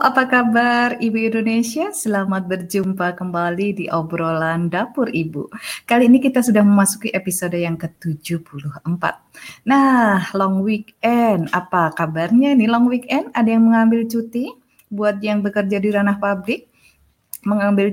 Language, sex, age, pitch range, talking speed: Indonesian, female, 30-49, 195-240 Hz, 125 wpm